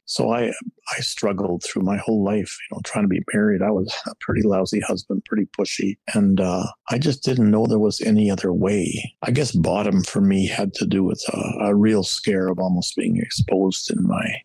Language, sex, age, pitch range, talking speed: English, male, 50-69, 95-115 Hz, 215 wpm